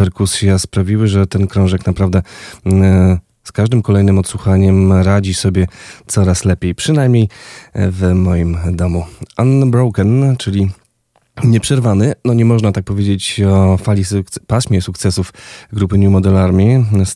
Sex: male